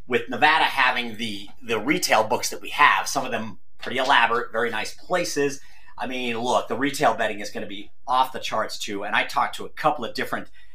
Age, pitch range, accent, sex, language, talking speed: 40-59, 110-145 Hz, American, male, English, 225 wpm